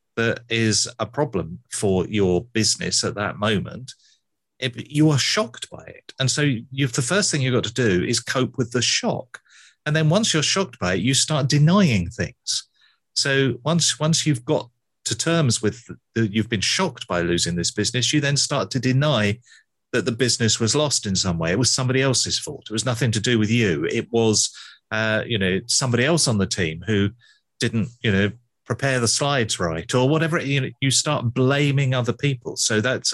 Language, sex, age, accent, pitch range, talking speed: English, male, 40-59, British, 110-140 Hz, 200 wpm